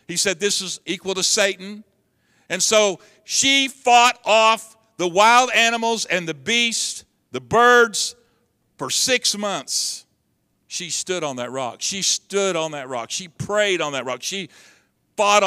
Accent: American